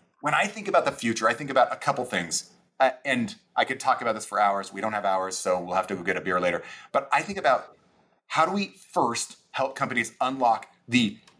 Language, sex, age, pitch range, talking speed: English, male, 30-49, 120-180 Hz, 240 wpm